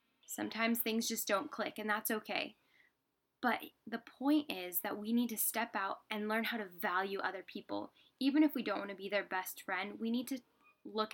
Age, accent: 10-29, American